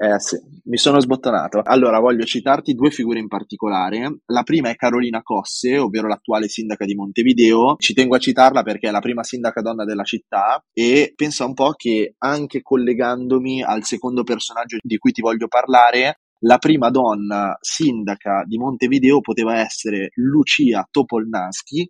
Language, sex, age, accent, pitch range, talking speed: Italian, male, 20-39, native, 105-130 Hz, 160 wpm